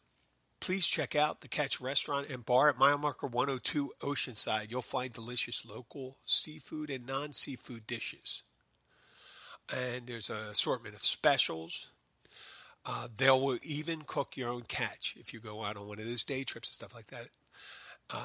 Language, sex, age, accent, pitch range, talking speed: English, male, 50-69, American, 115-140 Hz, 170 wpm